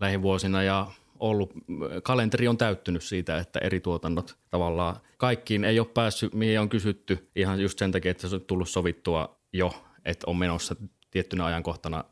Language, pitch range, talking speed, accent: Finnish, 90-105 Hz, 165 wpm, native